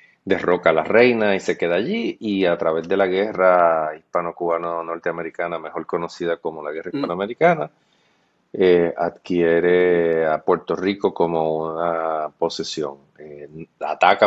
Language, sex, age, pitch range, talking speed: English, male, 30-49, 85-100 Hz, 130 wpm